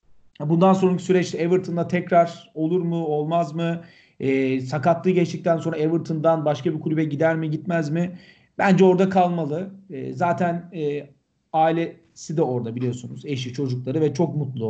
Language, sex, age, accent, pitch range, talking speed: Turkish, male, 40-59, native, 150-185 Hz, 145 wpm